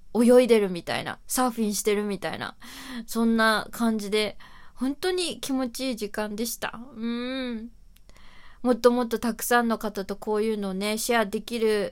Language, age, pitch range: Japanese, 20-39, 195-235 Hz